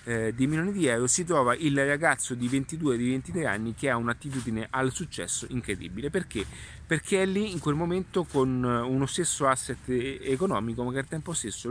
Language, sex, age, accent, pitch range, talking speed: Italian, male, 30-49, native, 115-150 Hz, 180 wpm